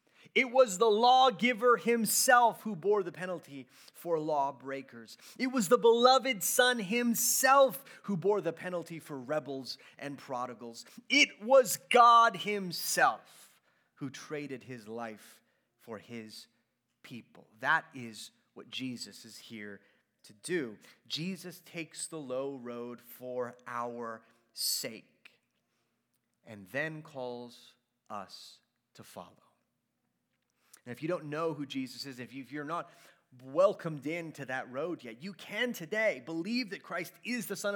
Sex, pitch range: male, 130-200 Hz